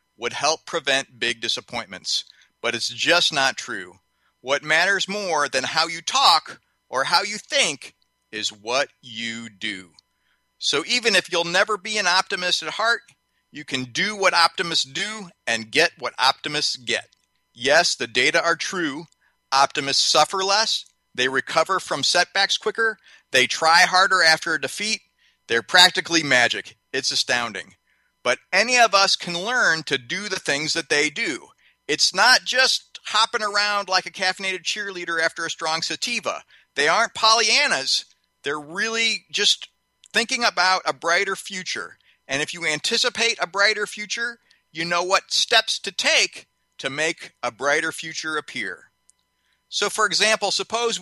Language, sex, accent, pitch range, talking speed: English, male, American, 155-210 Hz, 155 wpm